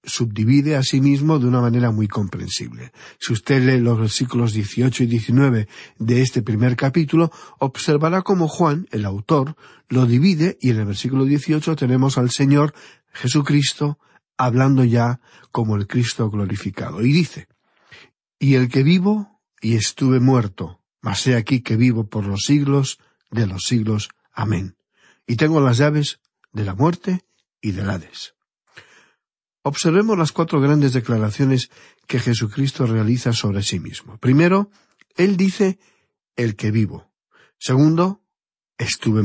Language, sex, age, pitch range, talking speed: Spanish, male, 50-69, 110-150 Hz, 145 wpm